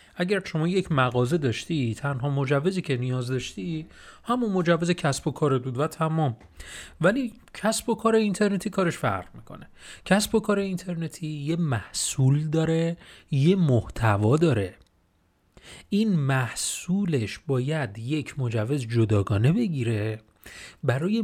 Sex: male